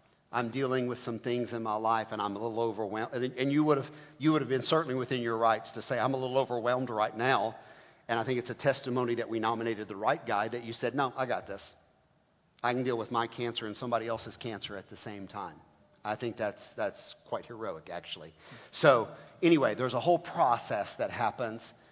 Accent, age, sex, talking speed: American, 50-69, male, 220 wpm